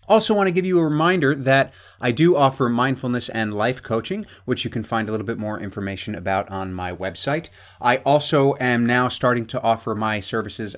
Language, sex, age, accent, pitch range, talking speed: English, male, 30-49, American, 105-135 Hz, 205 wpm